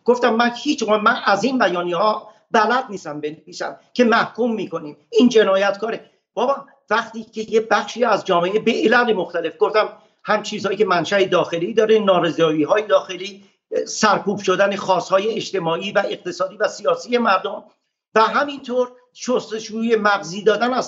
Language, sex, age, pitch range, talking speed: Persian, male, 50-69, 195-240 Hz, 145 wpm